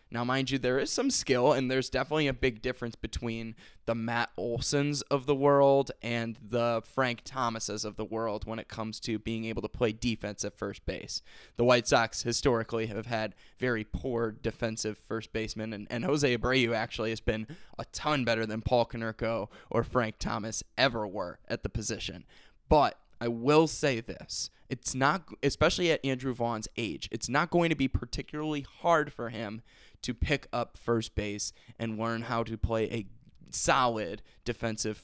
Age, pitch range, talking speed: 20-39, 110-135 Hz, 180 wpm